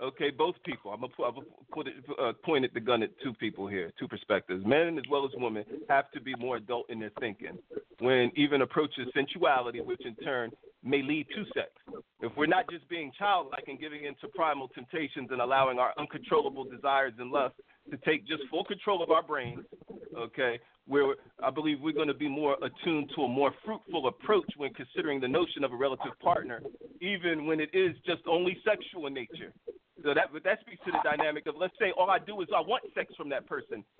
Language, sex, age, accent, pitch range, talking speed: English, male, 40-59, American, 145-210 Hz, 210 wpm